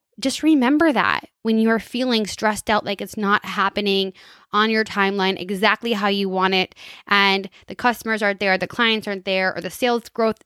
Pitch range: 190-230 Hz